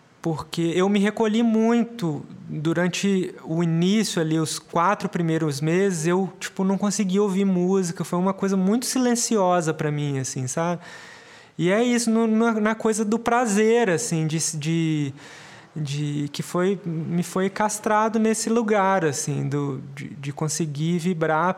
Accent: Brazilian